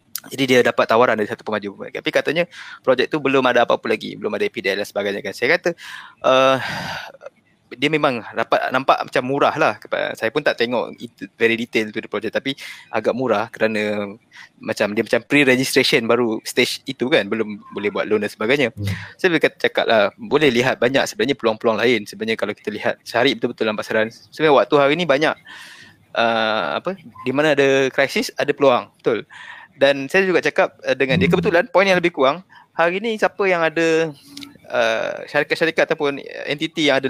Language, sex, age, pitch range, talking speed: Malay, male, 20-39, 120-160 Hz, 185 wpm